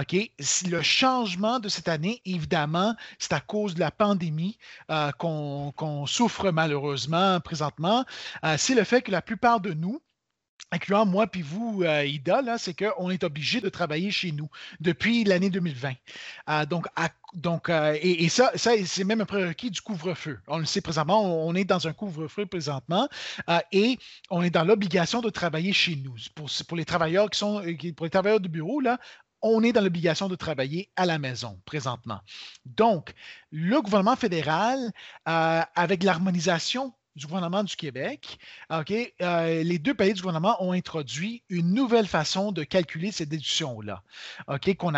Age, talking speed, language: 30-49, 180 wpm, French